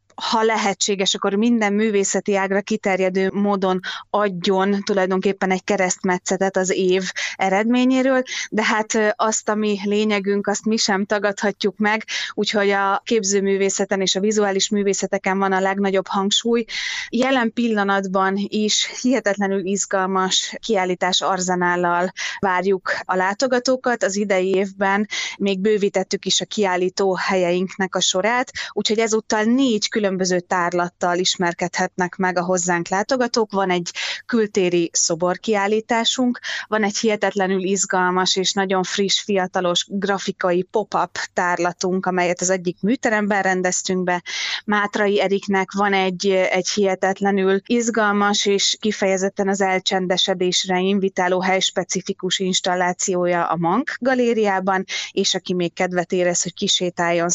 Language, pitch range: Hungarian, 185-210 Hz